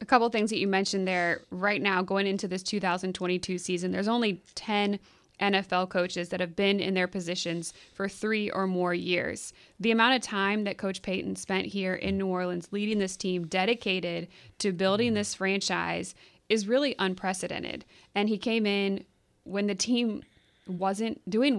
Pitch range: 185-210 Hz